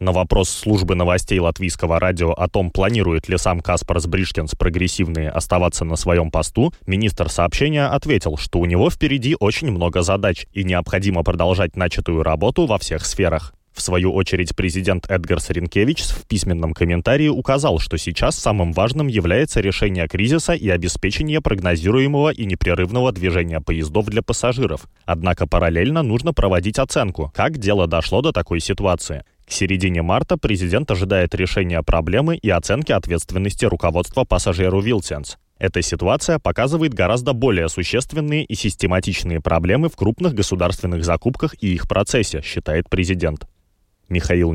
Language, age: Russian, 20-39